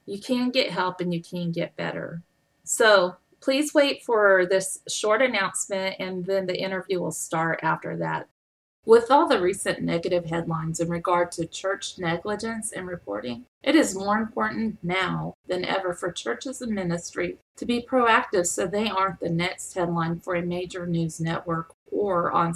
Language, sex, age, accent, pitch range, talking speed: English, female, 30-49, American, 170-215 Hz, 170 wpm